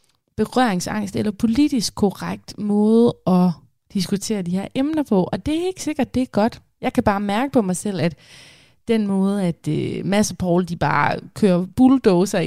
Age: 20-39